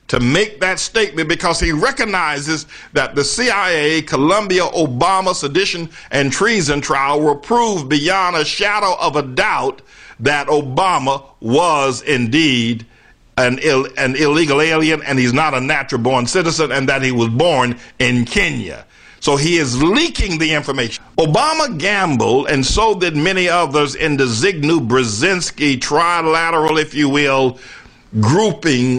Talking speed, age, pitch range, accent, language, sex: 140 wpm, 60-79, 135-175 Hz, American, English, male